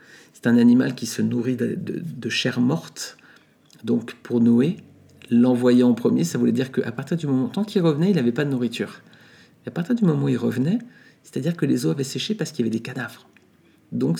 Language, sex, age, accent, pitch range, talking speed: French, male, 50-69, French, 120-165 Hz, 225 wpm